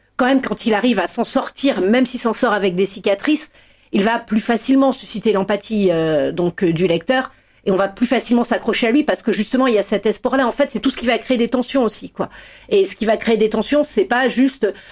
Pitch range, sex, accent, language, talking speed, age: 205-260 Hz, female, French, French, 260 wpm, 40-59